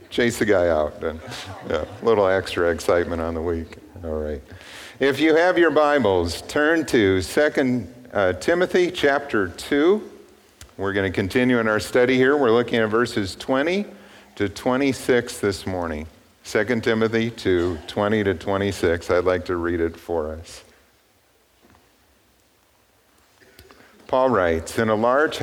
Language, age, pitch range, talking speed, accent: English, 50-69, 90-130 Hz, 140 wpm, American